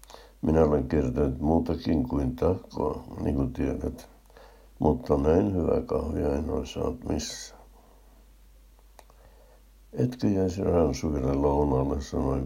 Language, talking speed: Finnish, 105 wpm